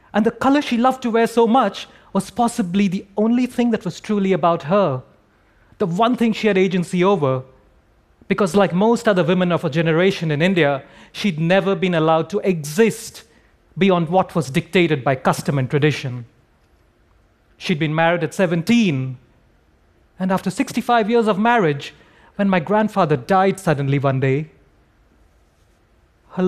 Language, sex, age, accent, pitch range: Korean, male, 30-49, Indian, 135-200 Hz